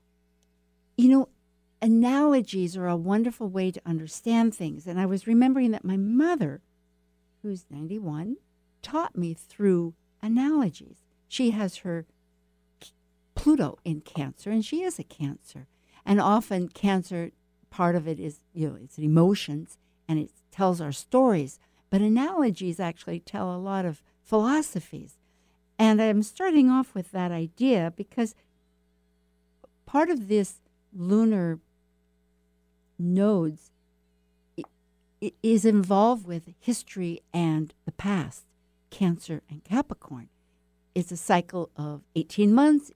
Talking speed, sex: 120 wpm, female